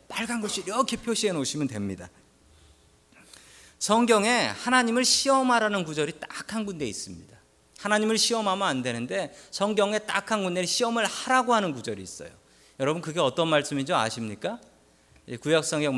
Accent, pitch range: native, 115-190 Hz